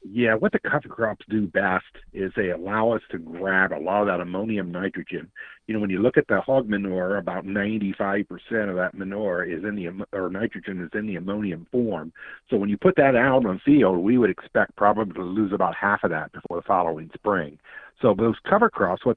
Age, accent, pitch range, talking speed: 50-69, American, 95-115 Hz, 220 wpm